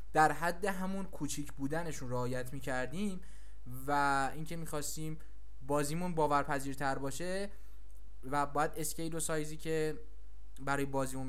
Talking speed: 115 wpm